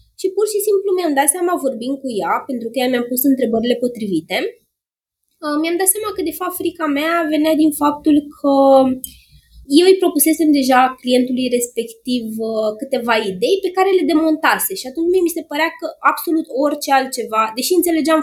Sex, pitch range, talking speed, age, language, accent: female, 240-340 Hz, 170 wpm, 20-39, Romanian, native